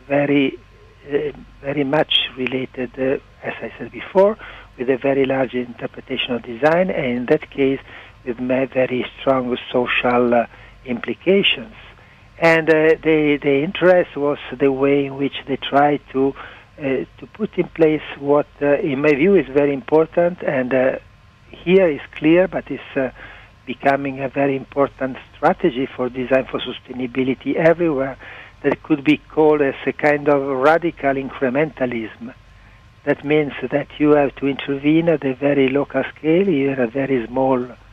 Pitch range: 125-145 Hz